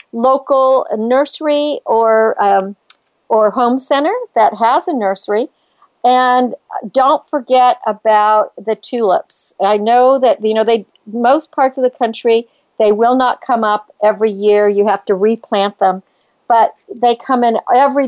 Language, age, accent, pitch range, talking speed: English, 50-69, American, 205-260 Hz, 155 wpm